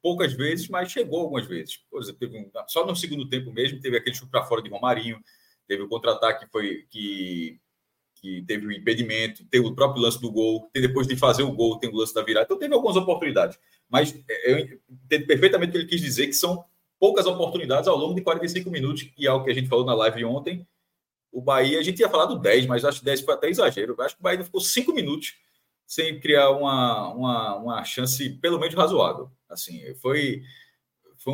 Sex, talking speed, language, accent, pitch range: male, 225 wpm, Portuguese, Brazilian, 125-175 Hz